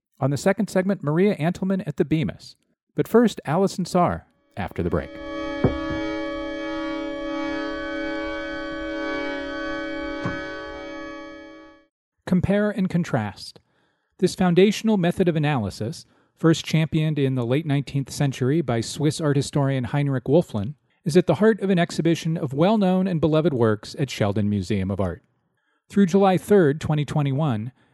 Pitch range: 130-195 Hz